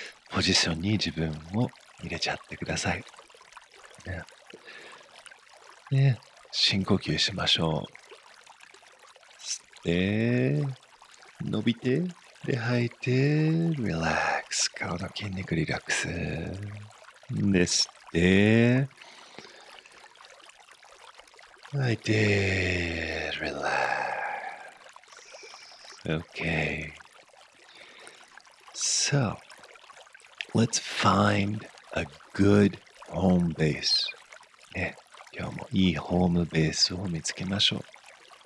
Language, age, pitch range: English, 50-69, 95-135 Hz